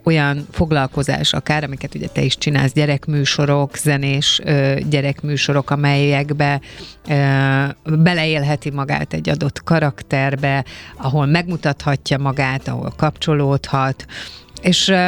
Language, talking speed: Hungarian, 90 wpm